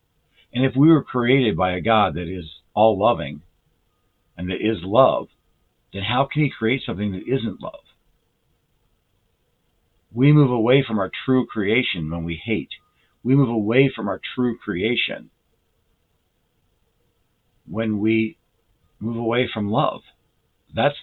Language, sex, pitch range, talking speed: English, male, 90-125 Hz, 135 wpm